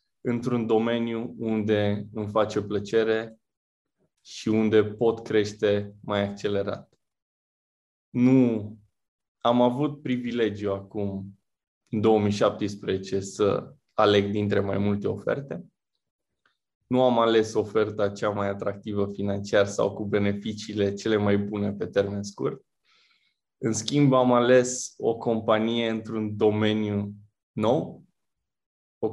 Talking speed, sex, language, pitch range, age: 105 wpm, male, Romanian, 100-115 Hz, 20-39